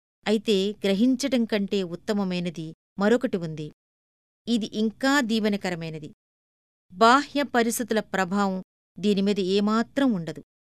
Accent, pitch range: native, 190-250 Hz